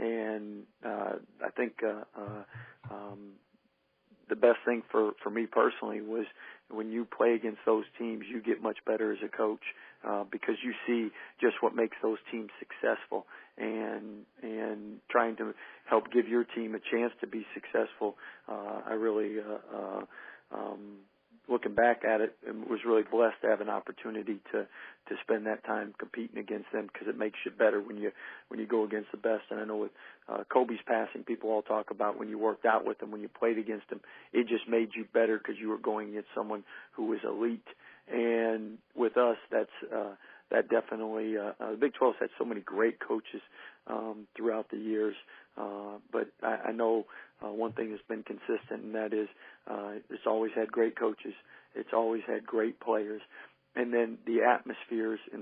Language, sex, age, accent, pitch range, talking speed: English, male, 40-59, American, 110-115 Hz, 190 wpm